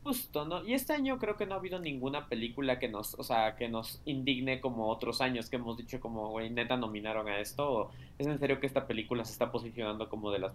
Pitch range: 115-145 Hz